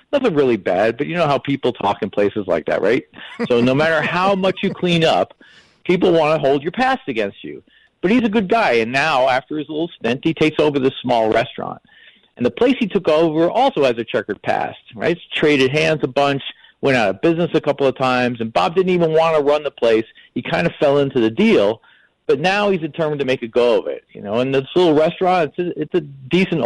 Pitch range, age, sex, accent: 130-180 Hz, 40-59, male, American